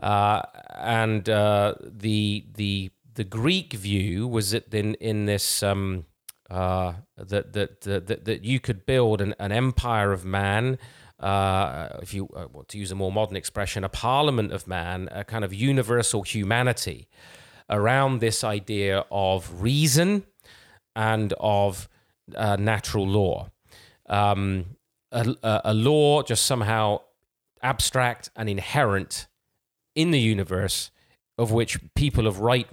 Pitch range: 95-115 Hz